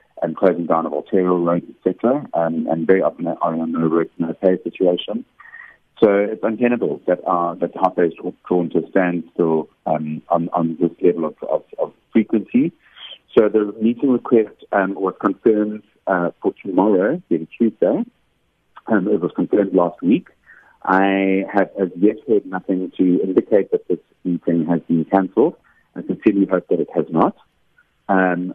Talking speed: 170 wpm